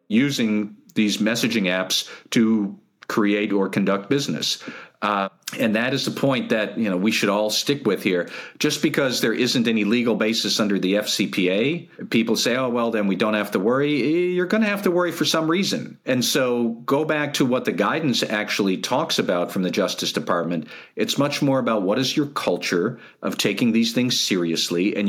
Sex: male